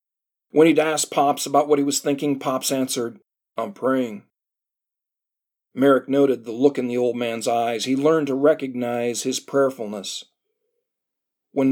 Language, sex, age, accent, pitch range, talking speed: English, male, 40-59, American, 120-145 Hz, 150 wpm